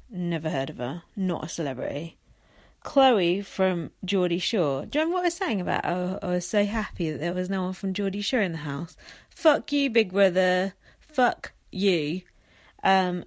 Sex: female